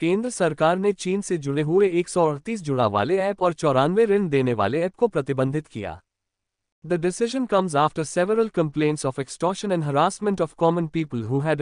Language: Hindi